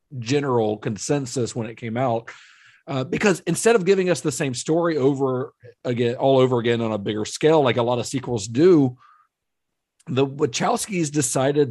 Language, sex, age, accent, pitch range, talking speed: English, male, 40-59, American, 120-150 Hz, 170 wpm